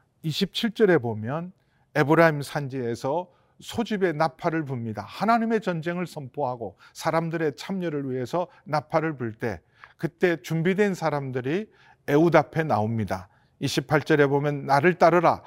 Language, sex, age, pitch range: Korean, male, 40-59, 130-170 Hz